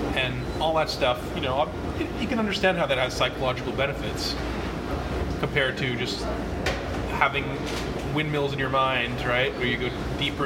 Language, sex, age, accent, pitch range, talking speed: English, male, 30-49, American, 100-145 Hz, 150 wpm